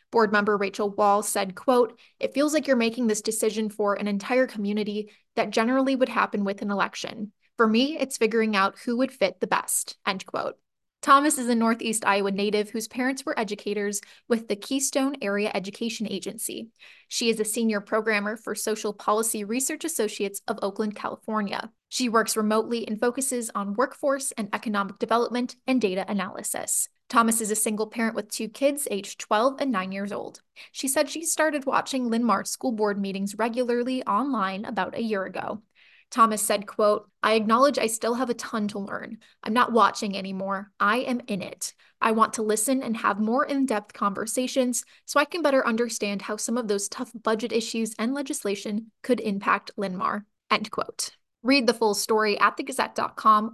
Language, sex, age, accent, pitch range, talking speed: English, female, 20-39, American, 205-255 Hz, 180 wpm